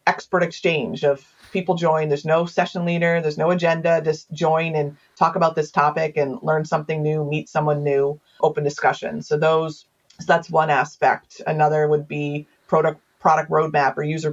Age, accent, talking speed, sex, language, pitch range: 30-49, American, 175 wpm, female, English, 150-180 Hz